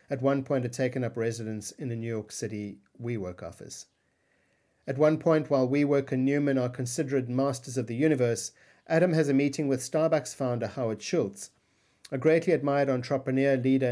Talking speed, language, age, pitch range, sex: 175 wpm, English, 50-69, 115-145 Hz, male